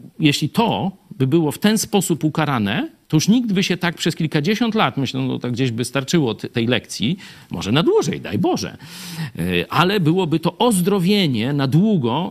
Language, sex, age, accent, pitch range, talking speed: Polish, male, 50-69, native, 115-165 Hz, 170 wpm